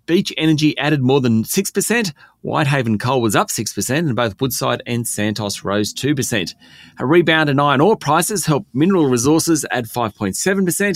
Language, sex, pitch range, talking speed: English, male, 125-175 Hz, 155 wpm